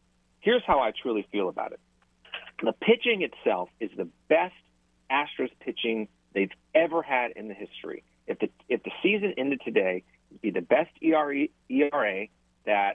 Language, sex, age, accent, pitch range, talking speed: English, male, 40-59, American, 95-140 Hz, 160 wpm